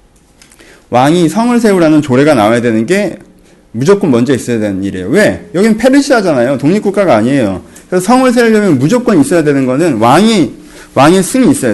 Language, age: Korean, 30-49